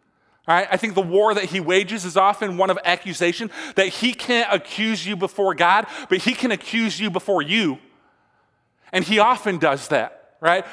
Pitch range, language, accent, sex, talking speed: 195-235 Hz, English, American, male, 190 wpm